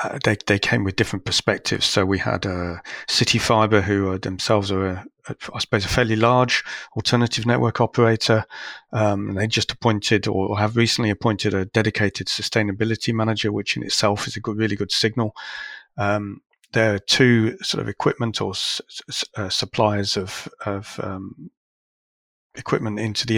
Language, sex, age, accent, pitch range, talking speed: English, male, 40-59, British, 95-115 Hz, 170 wpm